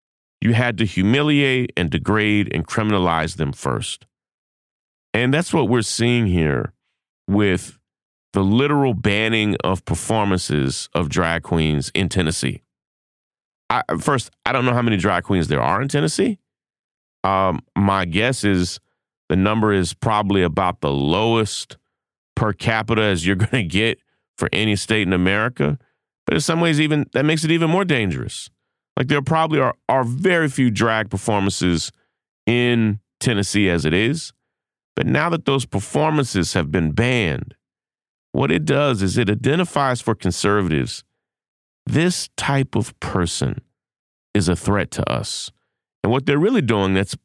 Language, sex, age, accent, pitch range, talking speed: English, male, 40-59, American, 95-130 Hz, 150 wpm